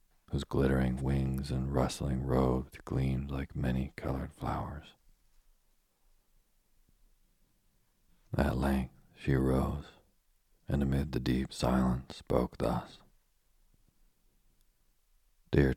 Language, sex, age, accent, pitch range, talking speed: English, male, 40-59, American, 65-70 Hz, 85 wpm